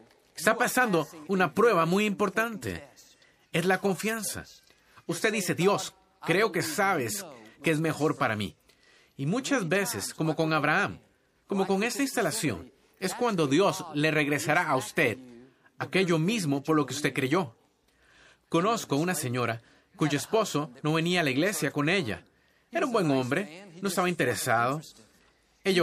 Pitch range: 145-200 Hz